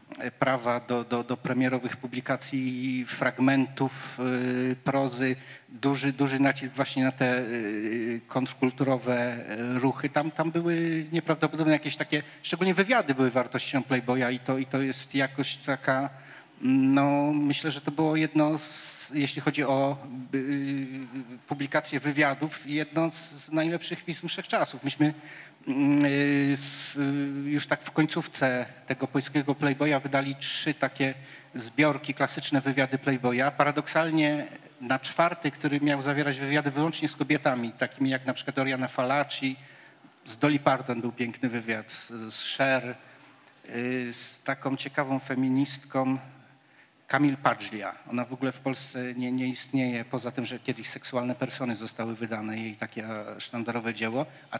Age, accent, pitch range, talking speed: 40-59, native, 130-150 Hz, 135 wpm